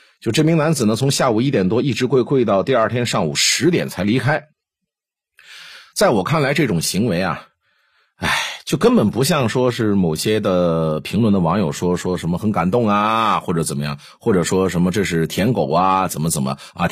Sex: male